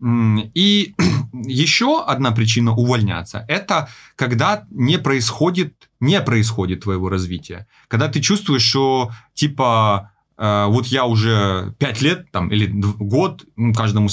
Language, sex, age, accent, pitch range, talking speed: Russian, male, 30-49, native, 115-170 Hz, 115 wpm